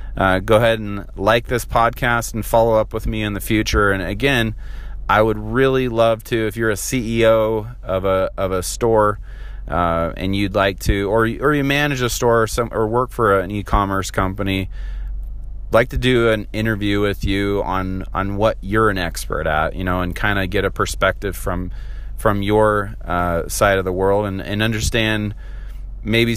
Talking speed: 195 wpm